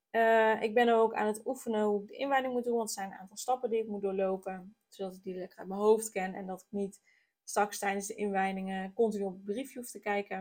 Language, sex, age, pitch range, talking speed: Dutch, female, 20-39, 200-240 Hz, 270 wpm